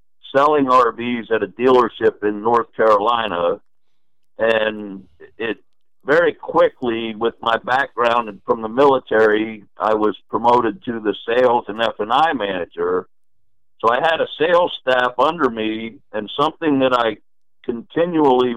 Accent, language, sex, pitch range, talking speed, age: American, English, male, 110-140 Hz, 135 wpm, 50-69